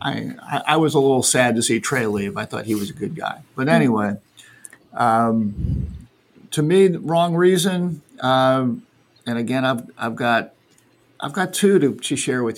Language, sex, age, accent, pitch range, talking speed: English, male, 50-69, American, 125-160 Hz, 175 wpm